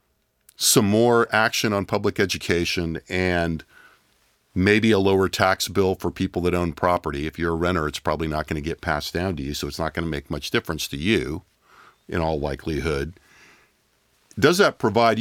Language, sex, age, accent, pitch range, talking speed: English, male, 50-69, American, 85-110 Hz, 185 wpm